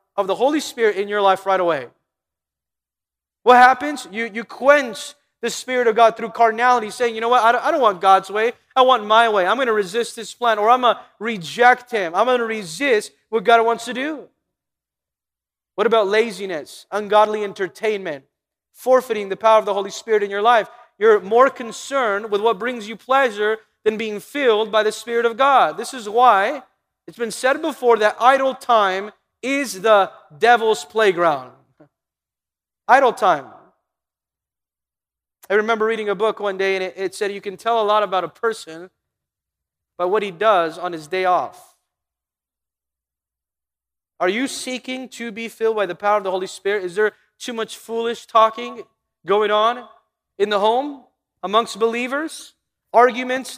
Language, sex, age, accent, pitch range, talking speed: English, male, 30-49, American, 195-240 Hz, 175 wpm